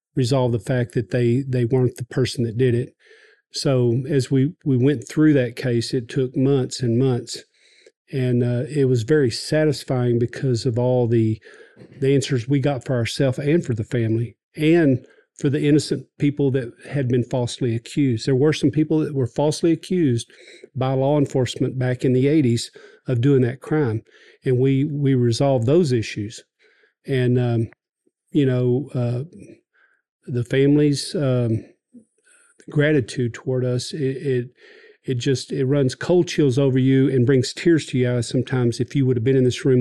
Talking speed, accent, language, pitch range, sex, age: 175 wpm, American, English, 125-150 Hz, male, 40-59